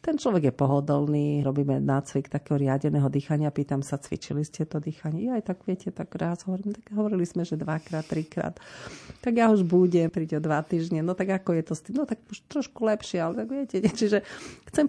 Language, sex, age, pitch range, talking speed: Slovak, female, 40-59, 165-200 Hz, 215 wpm